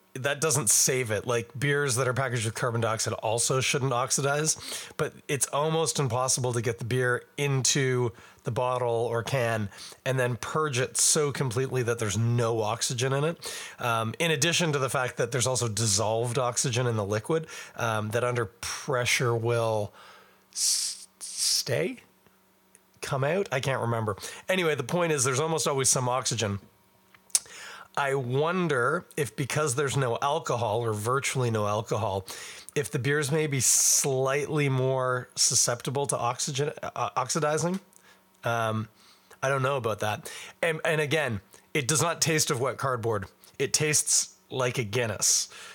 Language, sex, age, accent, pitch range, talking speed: English, male, 30-49, American, 115-145 Hz, 155 wpm